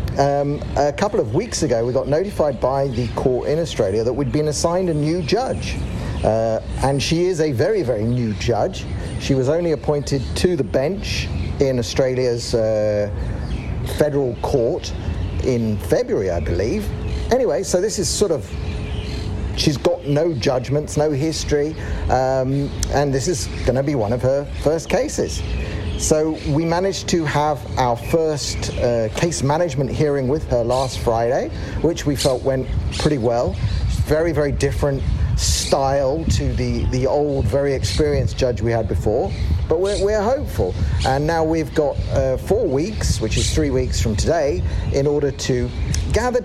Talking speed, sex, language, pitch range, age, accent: 165 wpm, male, English, 105-150 Hz, 50-69, British